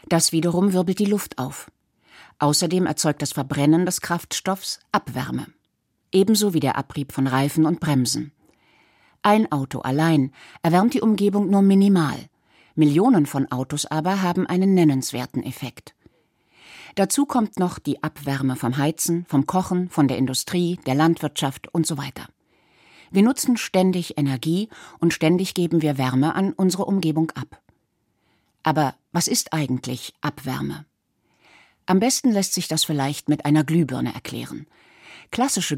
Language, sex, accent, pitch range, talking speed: German, female, German, 140-185 Hz, 140 wpm